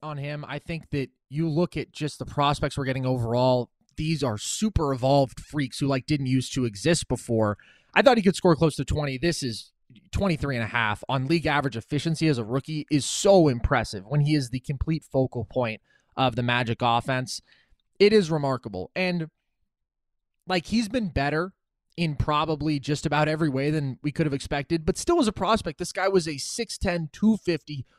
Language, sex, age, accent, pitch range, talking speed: English, male, 20-39, American, 130-175 Hz, 195 wpm